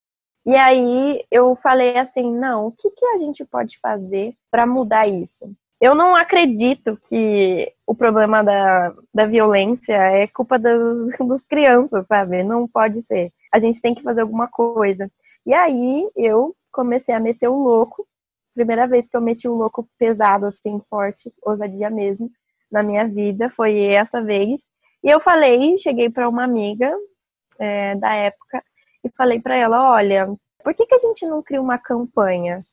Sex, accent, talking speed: female, Brazilian, 170 wpm